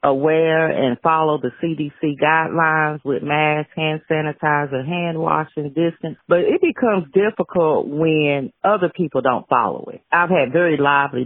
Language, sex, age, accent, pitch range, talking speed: English, female, 40-59, American, 140-185 Hz, 145 wpm